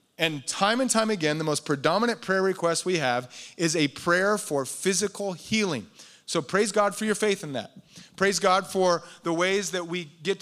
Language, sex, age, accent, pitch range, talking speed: English, male, 30-49, American, 170-220 Hz, 195 wpm